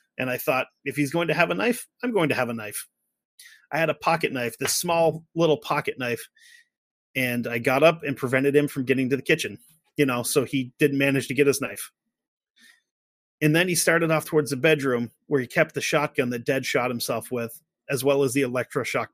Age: 30-49